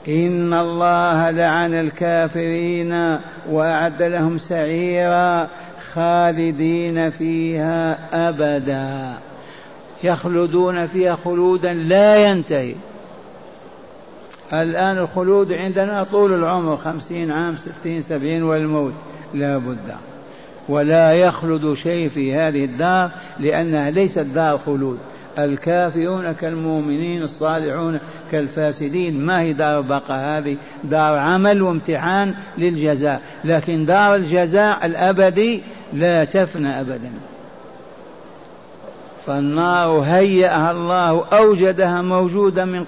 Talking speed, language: 90 wpm, Arabic